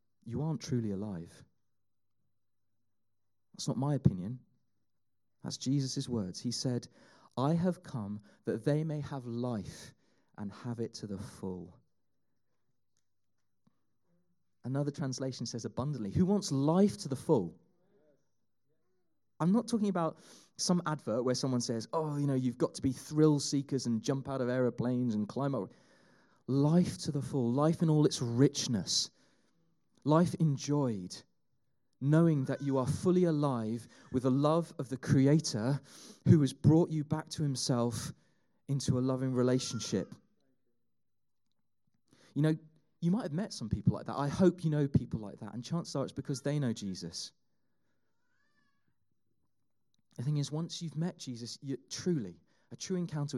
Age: 30-49